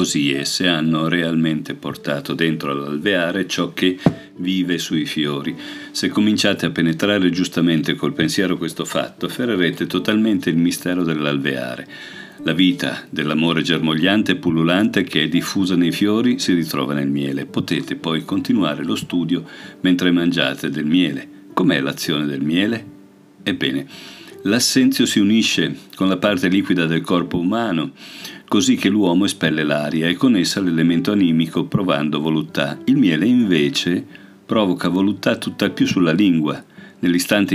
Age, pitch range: 50-69, 80-95 Hz